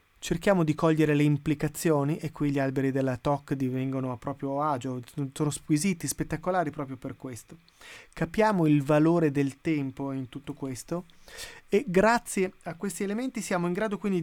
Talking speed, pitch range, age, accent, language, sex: 160 wpm, 145-180 Hz, 30-49, native, Italian, male